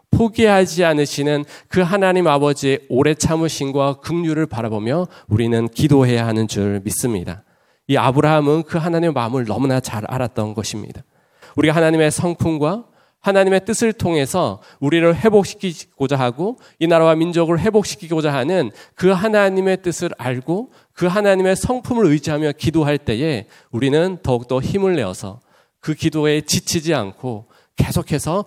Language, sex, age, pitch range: Korean, male, 40-59, 125-170 Hz